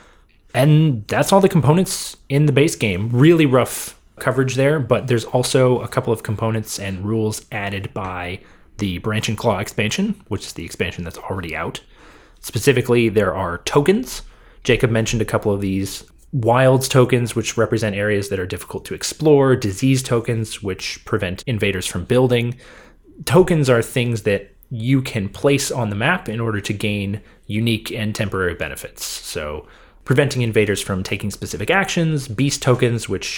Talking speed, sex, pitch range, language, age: 165 wpm, male, 100-135 Hz, English, 30-49